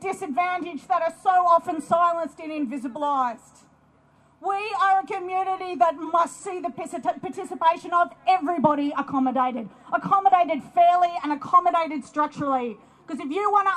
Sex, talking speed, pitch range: female, 130 wpm, 260-345 Hz